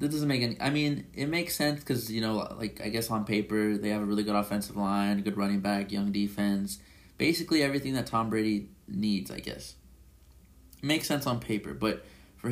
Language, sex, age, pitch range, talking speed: English, male, 20-39, 100-135 Hz, 215 wpm